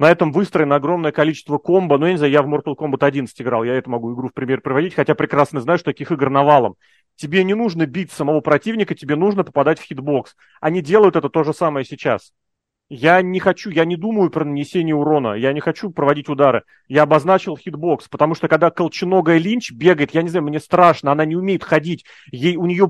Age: 30-49